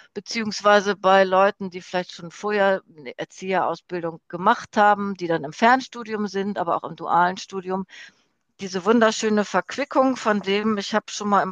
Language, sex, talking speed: German, female, 160 wpm